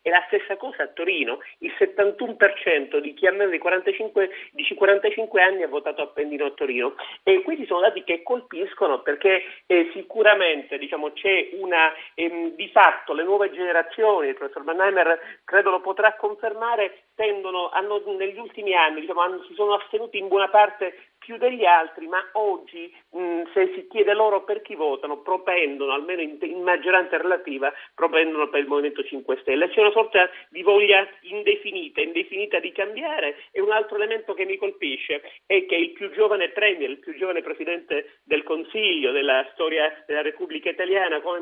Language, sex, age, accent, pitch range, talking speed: Italian, male, 40-59, native, 170-225 Hz, 170 wpm